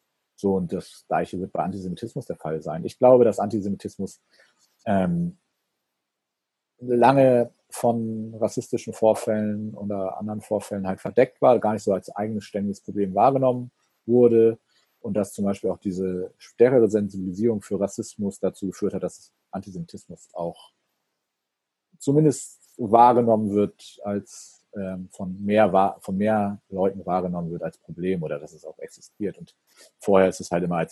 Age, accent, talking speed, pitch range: 40-59, German, 145 wpm, 85-110 Hz